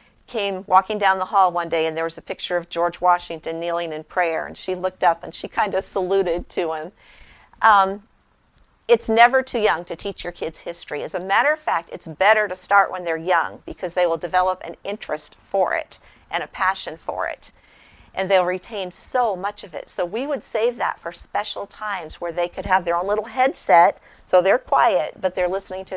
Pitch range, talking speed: 175-215 Hz, 215 wpm